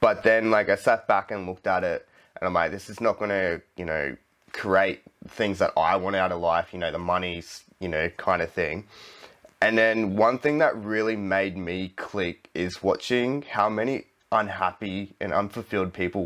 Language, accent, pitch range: English, Australian, 90-110 Hz